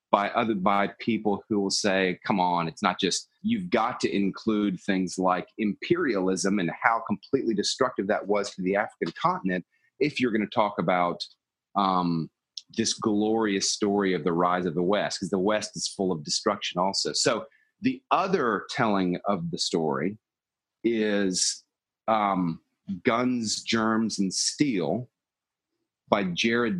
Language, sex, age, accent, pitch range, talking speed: English, male, 30-49, American, 95-115 Hz, 150 wpm